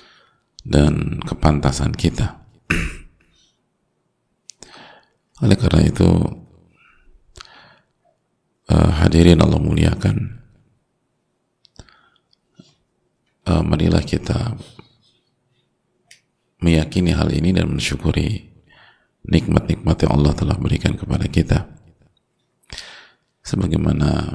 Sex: male